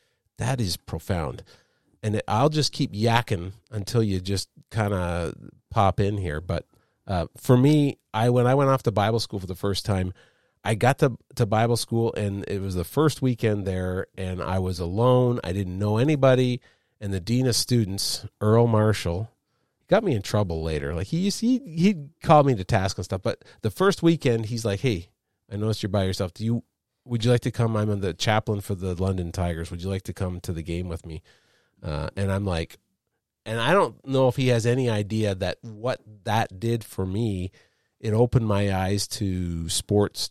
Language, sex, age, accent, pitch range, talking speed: English, male, 40-59, American, 95-120 Hz, 200 wpm